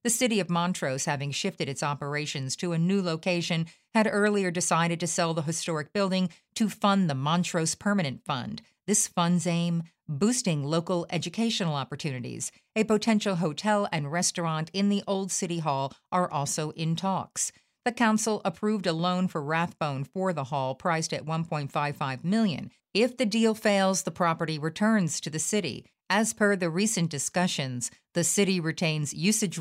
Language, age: English, 50-69